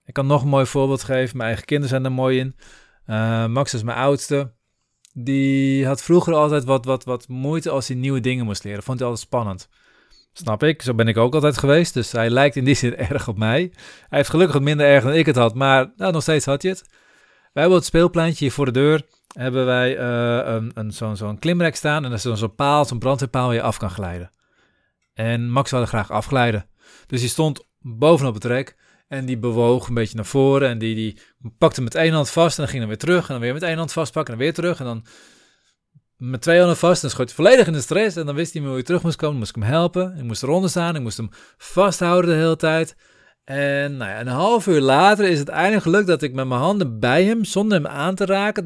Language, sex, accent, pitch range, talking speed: Dutch, male, Dutch, 120-165 Hz, 255 wpm